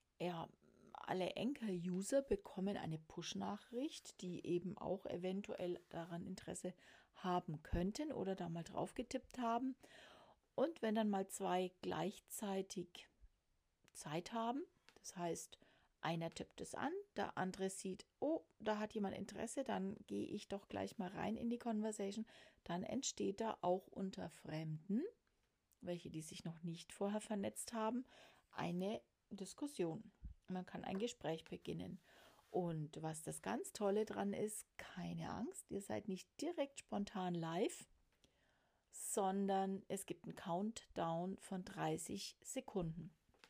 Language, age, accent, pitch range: German, 40-59, German, 180-220 Hz